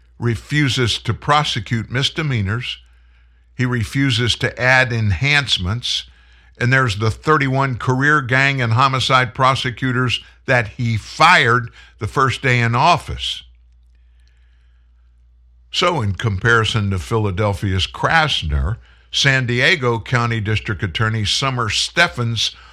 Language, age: English, 60-79